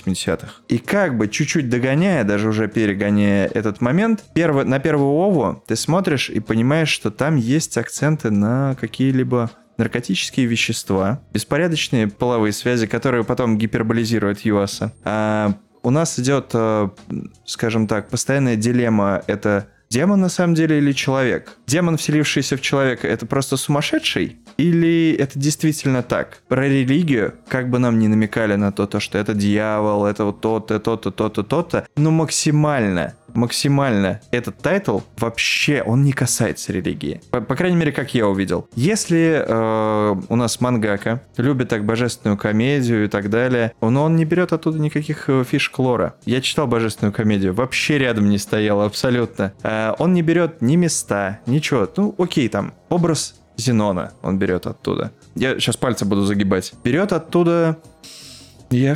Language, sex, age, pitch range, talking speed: Russian, male, 20-39, 110-150 Hz, 145 wpm